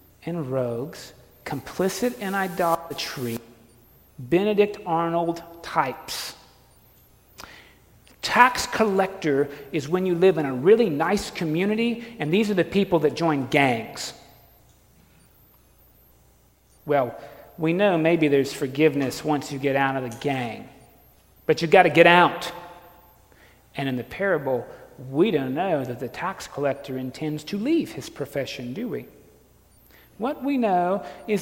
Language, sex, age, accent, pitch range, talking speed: English, male, 40-59, American, 160-245 Hz, 130 wpm